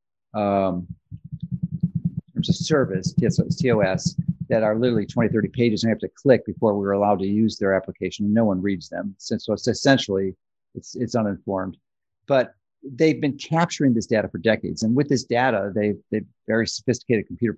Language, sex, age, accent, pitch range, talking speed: English, male, 50-69, American, 110-145 Hz, 180 wpm